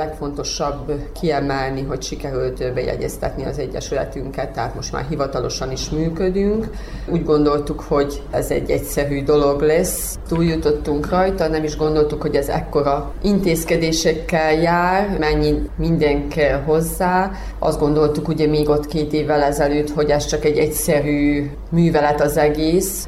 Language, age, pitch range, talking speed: Hungarian, 30-49, 145-160 Hz, 135 wpm